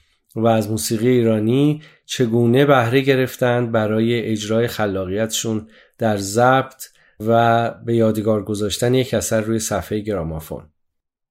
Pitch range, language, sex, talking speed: 110-125 Hz, Persian, male, 110 wpm